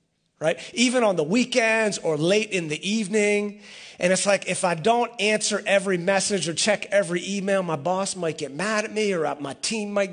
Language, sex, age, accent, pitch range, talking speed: English, male, 40-59, American, 140-195 Hz, 200 wpm